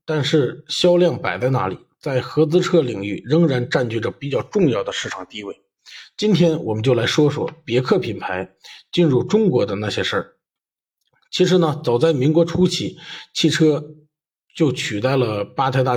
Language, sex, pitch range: Chinese, male, 125-175 Hz